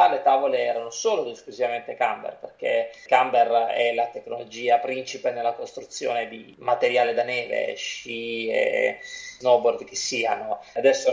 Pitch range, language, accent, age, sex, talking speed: 120-195 Hz, Italian, native, 20-39, male, 135 wpm